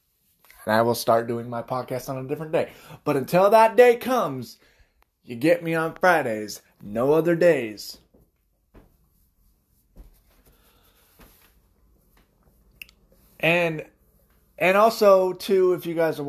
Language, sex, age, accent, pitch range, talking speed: English, male, 20-39, American, 125-185 Hz, 120 wpm